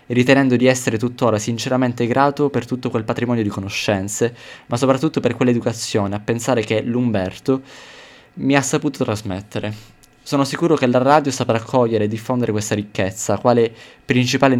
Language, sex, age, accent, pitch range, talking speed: Italian, male, 20-39, native, 105-125 Hz, 155 wpm